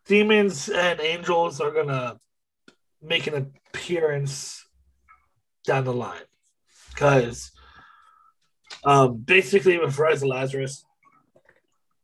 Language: English